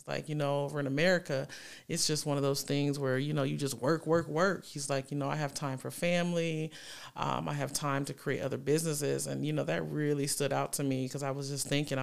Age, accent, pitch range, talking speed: 30-49, American, 135-150 Hz, 255 wpm